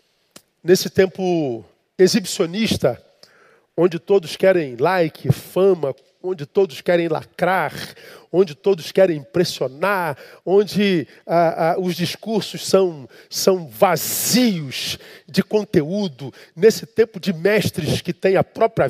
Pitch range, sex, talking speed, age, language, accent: 180-245 Hz, male, 110 wpm, 40-59, Portuguese, Brazilian